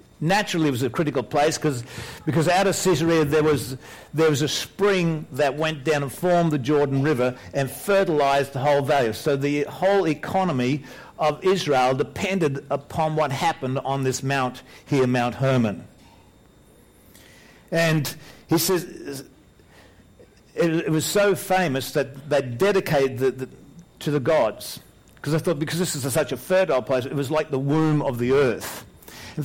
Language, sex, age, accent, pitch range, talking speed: English, male, 50-69, Australian, 130-165 Hz, 165 wpm